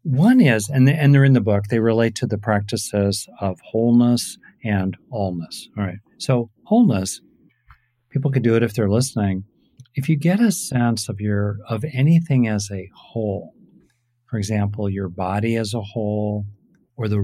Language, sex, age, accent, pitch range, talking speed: English, male, 50-69, American, 100-120 Hz, 165 wpm